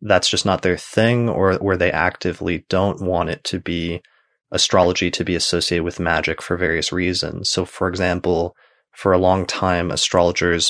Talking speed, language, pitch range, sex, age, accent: 175 wpm, English, 85-95 Hz, male, 30-49, American